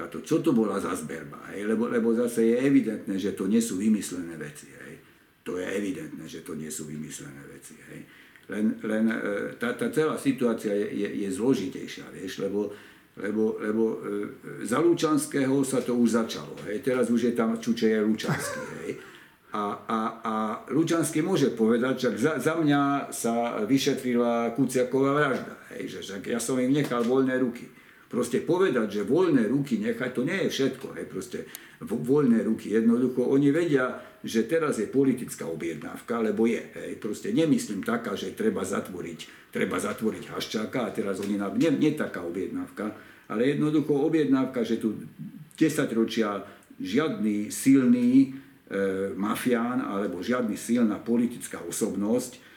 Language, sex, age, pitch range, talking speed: Slovak, male, 60-79, 110-140 Hz, 150 wpm